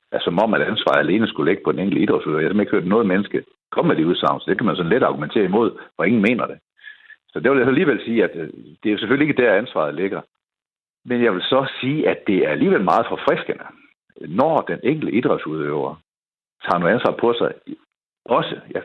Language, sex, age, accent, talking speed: Danish, male, 60-79, native, 230 wpm